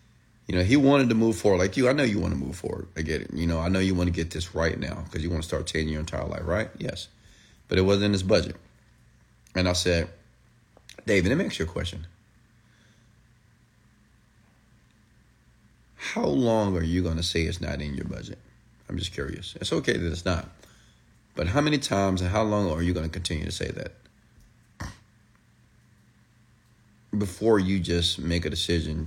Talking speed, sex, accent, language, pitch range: 200 wpm, male, American, English, 85-110 Hz